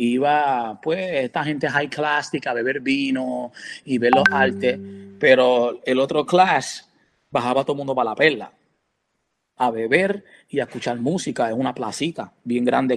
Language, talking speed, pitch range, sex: Spanish, 160 wpm, 145-180 Hz, male